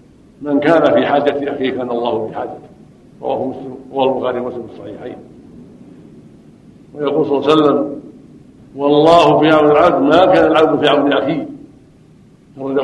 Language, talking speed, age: Arabic, 140 wpm, 60-79